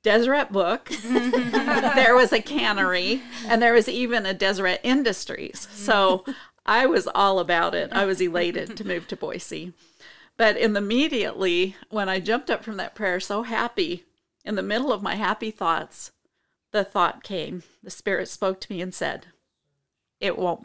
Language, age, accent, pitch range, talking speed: English, 50-69, American, 180-225 Hz, 165 wpm